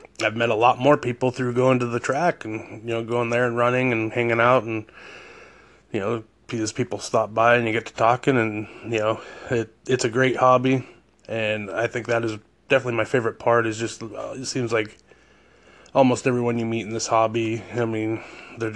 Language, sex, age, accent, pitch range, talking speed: English, male, 20-39, American, 110-120 Hz, 205 wpm